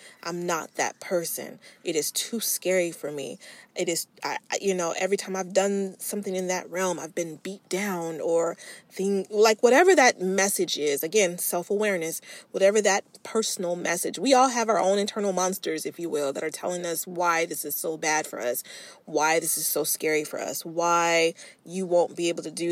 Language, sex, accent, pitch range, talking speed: English, female, American, 170-200 Hz, 195 wpm